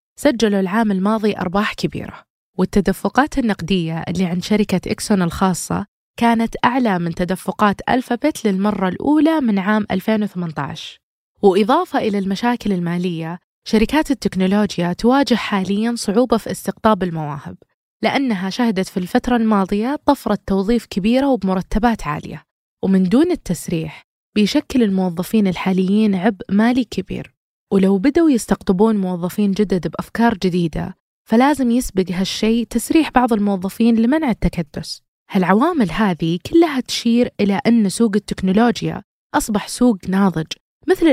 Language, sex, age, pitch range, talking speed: Arabic, female, 20-39, 190-235 Hz, 115 wpm